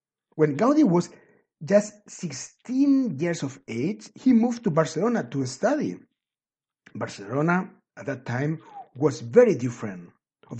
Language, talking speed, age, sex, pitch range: Spanish, 125 wpm, 50-69, male, 135-190 Hz